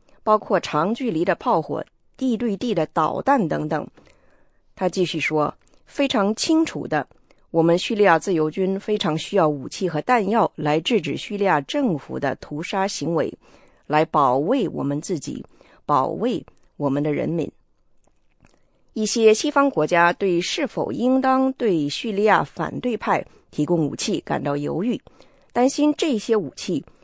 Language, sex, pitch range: English, female, 160-245 Hz